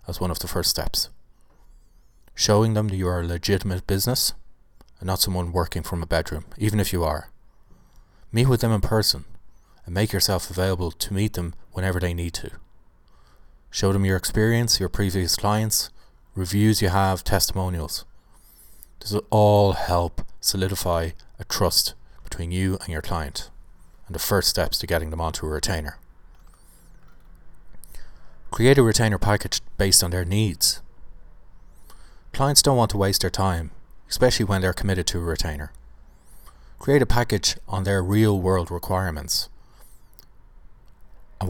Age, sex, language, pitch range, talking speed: 30-49, male, English, 85-105 Hz, 150 wpm